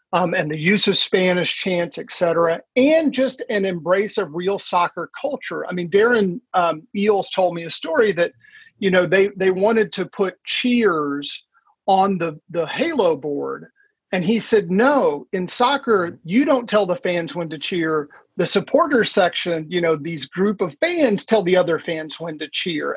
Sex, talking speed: male, 185 wpm